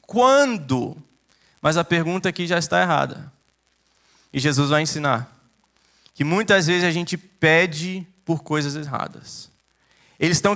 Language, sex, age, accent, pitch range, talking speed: English, male, 20-39, Brazilian, 155-225 Hz, 130 wpm